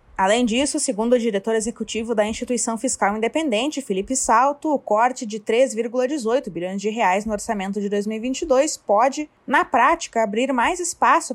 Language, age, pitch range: Portuguese, 20-39, 225-280 Hz